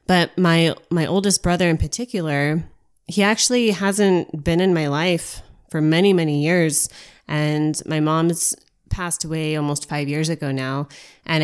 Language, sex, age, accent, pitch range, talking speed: English, female, 20-39, American, 155-195 Hz, 150 wpm